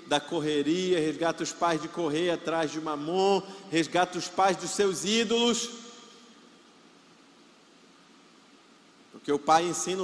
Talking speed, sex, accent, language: 120 wpm, male, Brazilian, Portuguese